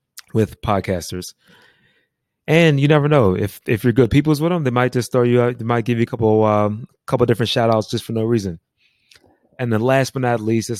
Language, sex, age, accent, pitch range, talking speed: English, male, 30-49, American, 95-115 Hz, 235 wpm